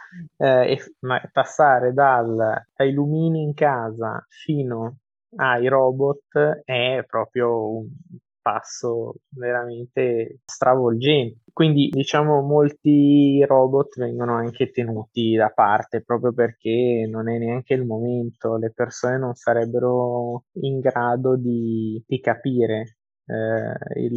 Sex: male